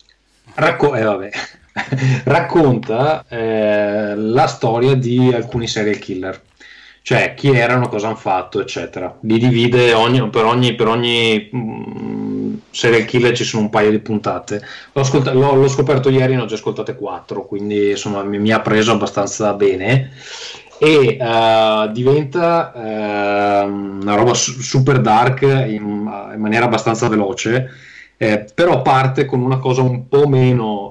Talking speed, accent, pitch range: 150 wpm, native, 110-130 Hz